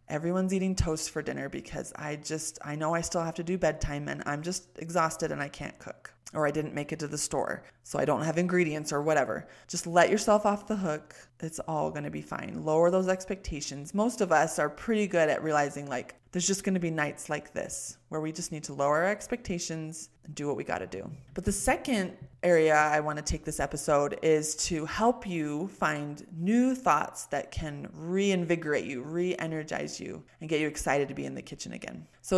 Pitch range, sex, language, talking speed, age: 150-180 Hz, female, English, 220 wpm, 20-39